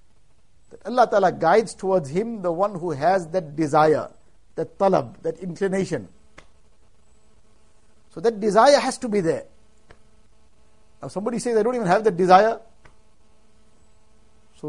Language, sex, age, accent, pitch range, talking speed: English, male, 60-79, Indian, 170-205 Hz, 130 wpm